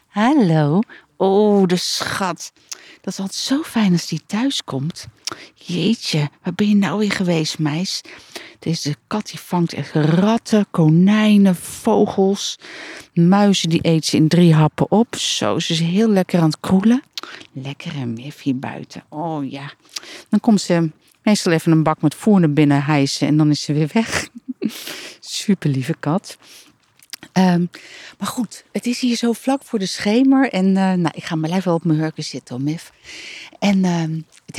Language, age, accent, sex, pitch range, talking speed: Dutch, 50-69, Dutch, female, 160-225 Hz, 170 wpm